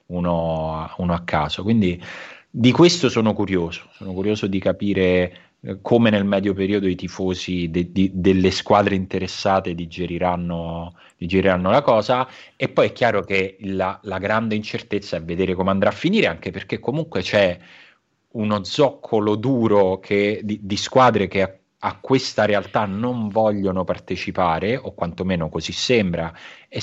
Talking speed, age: 145 wpm, 30-49